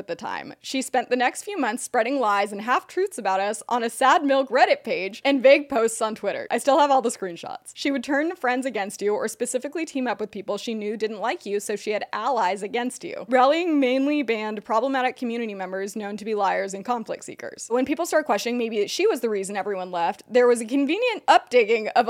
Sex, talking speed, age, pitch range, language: female, 235 wpm, 20-39, 210-275 Hz, English